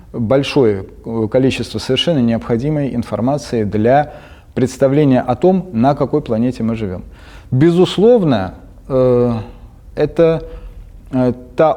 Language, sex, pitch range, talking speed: Russian, male, 105-130 Hz, 85 wpm